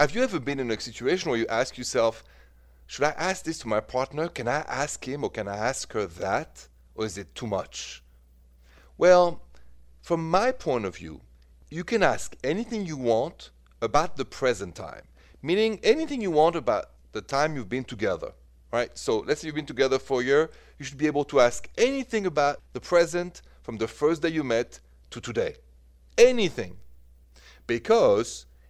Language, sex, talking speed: English, male, 185 wpm